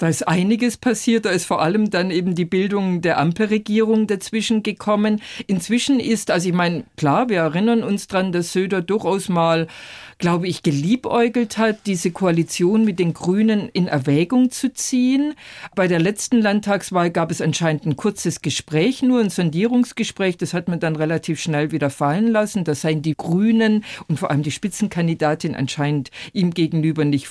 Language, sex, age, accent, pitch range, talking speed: German, female, 50-69, German, 165-225 Hz, 170 wpm